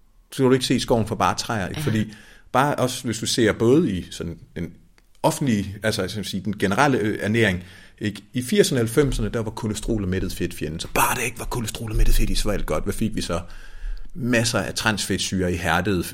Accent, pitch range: native, 90-120 Hz